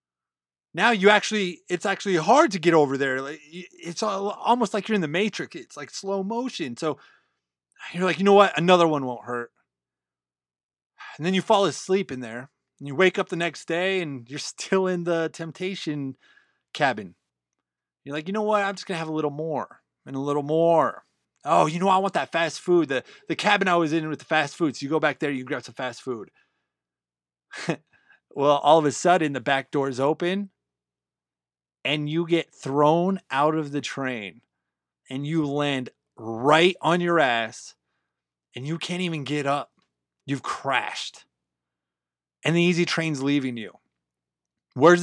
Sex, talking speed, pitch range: male, 185 wpm, 130-195 Hz